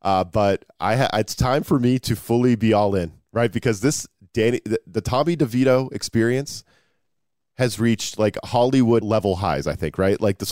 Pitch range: 105-130 Hz